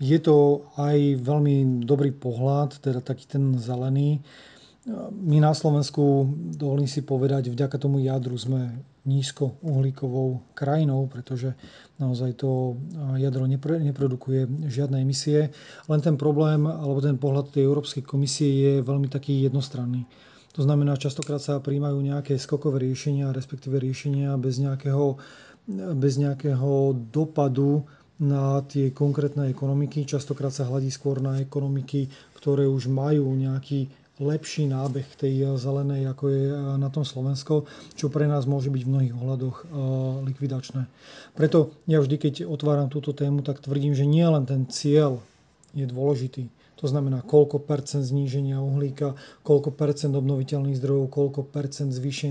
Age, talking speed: 30-49, 135 wpm